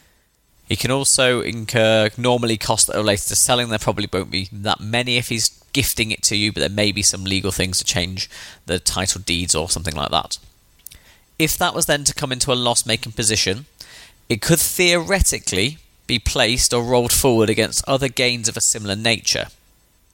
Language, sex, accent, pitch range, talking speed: English, male, British, 95-125 Hz, 190 wpm